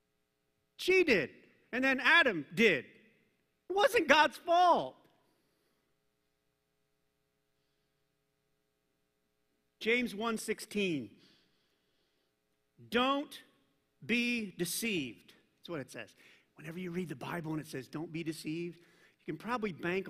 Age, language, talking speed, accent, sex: 40-59, English, 100 wpm, American, male